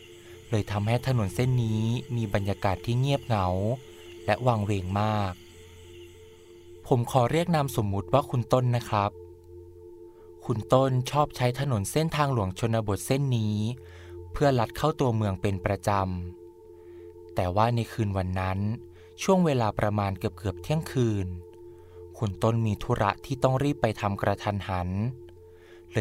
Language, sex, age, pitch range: Thai, male, 20-39, 90-120 Hz